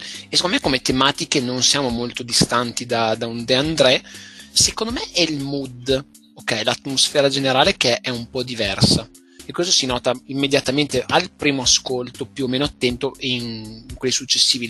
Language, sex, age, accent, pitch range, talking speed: Italian, male, 30-49, native, 120-145 Hz, 165 wpm